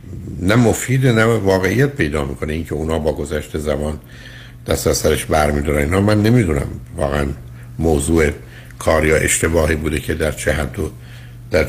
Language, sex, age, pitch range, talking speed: Persian, male, 60-79, 75-95 Hz, 145 wpm